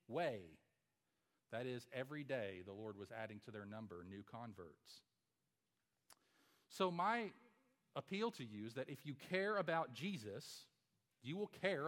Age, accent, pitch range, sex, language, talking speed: 40-59, American, 130-190 Hz, male, English, 145 wpm